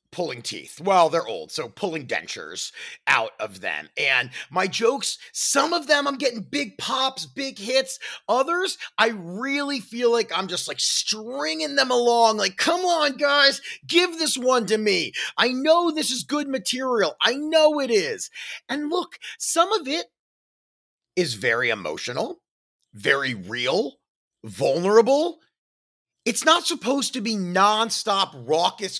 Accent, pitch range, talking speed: American, 190-310 Hz, 145 wpm